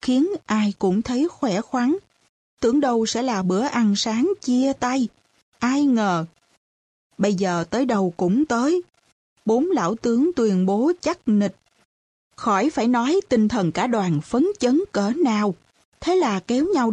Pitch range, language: 195-260 Hz, Vietnamese